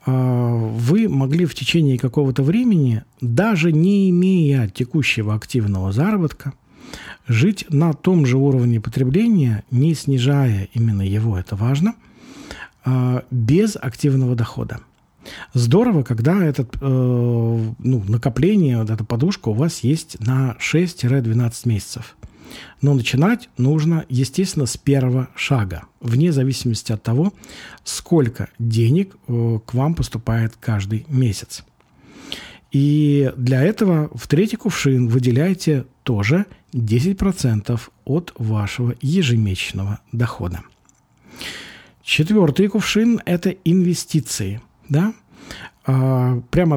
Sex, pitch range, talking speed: male, 120-160 Hz, 100 wpm